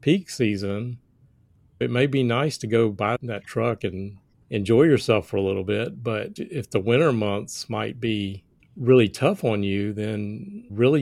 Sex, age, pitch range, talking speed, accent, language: male, 40-59, 105-130 Hz, 170 wpm, American, English